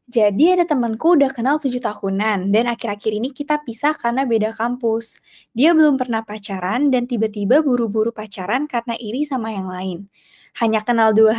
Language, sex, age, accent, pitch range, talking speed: Indonesian, female, 20-39, native, 215-265 Hz, 165 wpm